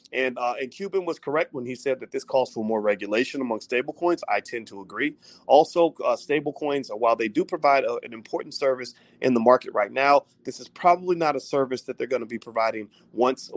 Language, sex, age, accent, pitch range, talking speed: English, male, 30-49, American, 115-135 Hz, 230 wpm